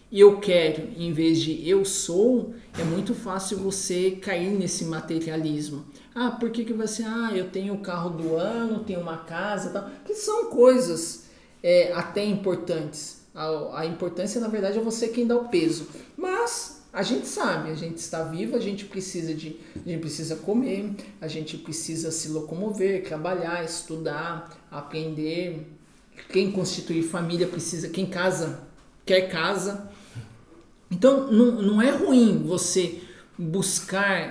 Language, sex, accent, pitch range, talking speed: Portuguese, male, Brazilian, 165-225 Hz, 150 wpm